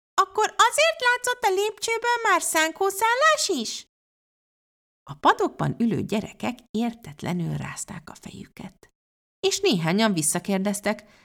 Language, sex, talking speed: Hungarian, female, 100 wpm